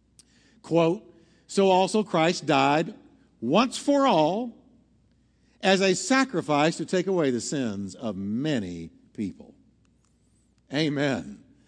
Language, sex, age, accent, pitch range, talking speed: English, male, 60-79, American, 145-200 Hz, 105 wpm